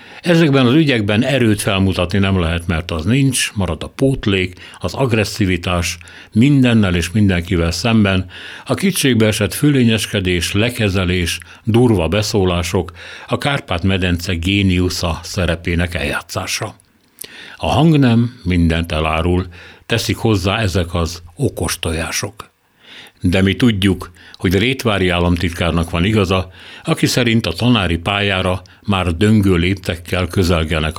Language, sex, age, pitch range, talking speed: Hungarian, male, 60-79, 85-110 Hz, 115 wpm